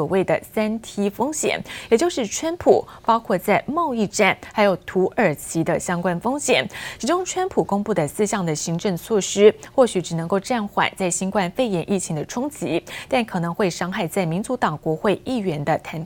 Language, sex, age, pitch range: Chinese, female, 20-39, 180-245 Hz